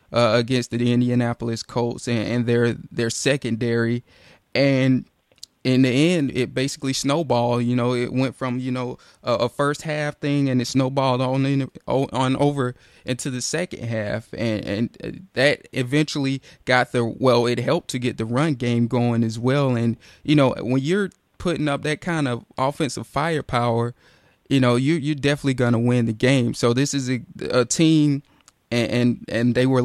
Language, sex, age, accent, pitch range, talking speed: English, male, 20-39, American, 120-140 Hz, 180 wpm